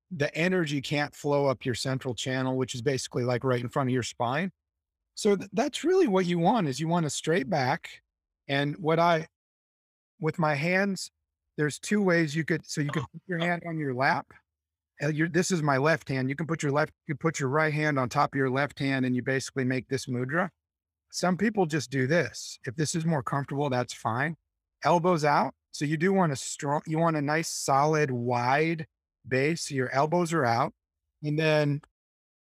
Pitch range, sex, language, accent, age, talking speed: 125-160 Hz, male, English, American, 30-49, 210 wpm